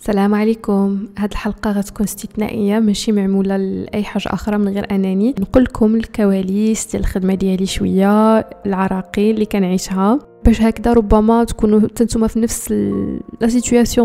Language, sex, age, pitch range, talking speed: Arabic, female, 20-39, 200-220 Hz, 135 wpm